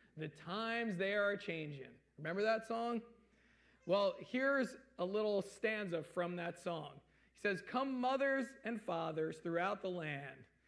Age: 40-59